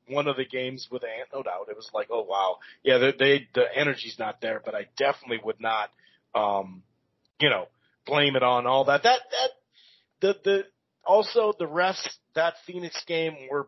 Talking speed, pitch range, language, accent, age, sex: 195 wpm, 145-190 Hz, English, American, 40-59, male